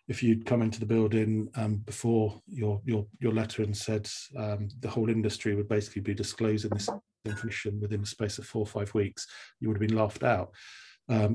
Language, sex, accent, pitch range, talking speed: English, male, British, 110-115 Hz, 205 wpm